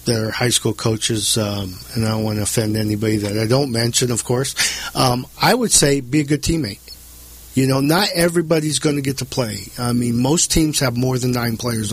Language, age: English, 50-69